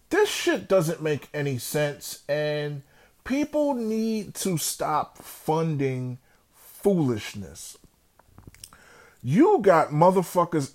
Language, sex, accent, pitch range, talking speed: English, male, American, 135-175 Hz, 90 wpm